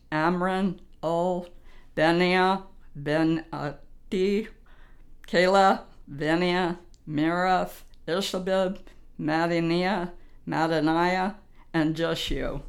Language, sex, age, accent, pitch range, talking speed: English, female, 60-79, American, 165-195 Hz, 60 wpm